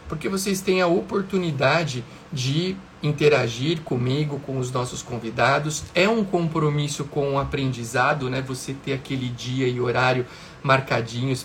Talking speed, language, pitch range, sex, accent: 135 wpm, Portuguese, 135-165 Hz, male, Brazilian